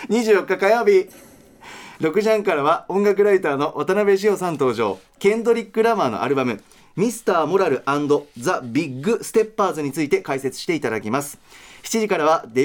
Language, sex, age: Japanese, male, 30-49